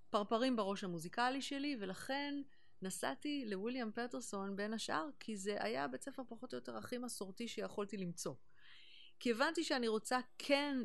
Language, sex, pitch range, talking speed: Hebrew, female, 165-220 Hz, 150 wpm